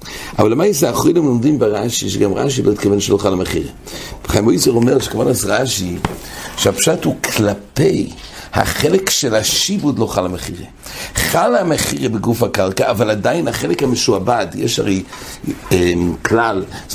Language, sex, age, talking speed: English, male, 60-79, 125 wpm